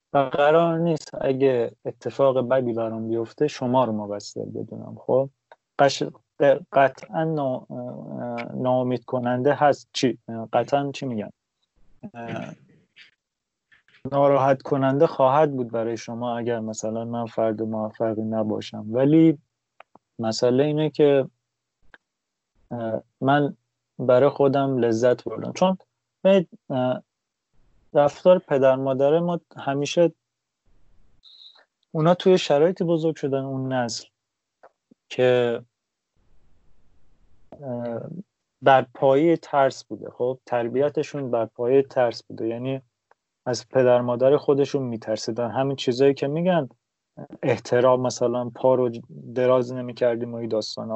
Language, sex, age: Persian, male, 30-49